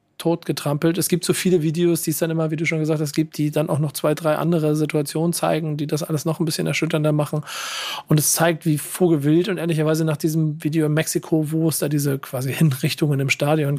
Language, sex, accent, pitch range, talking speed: German, male, German, 155-170 Hz, 240 wpm